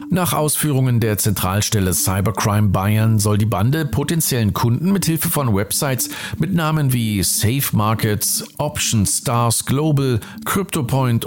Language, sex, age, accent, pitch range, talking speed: German, male, 50-69, German, 105-150 Hz, 130 wpm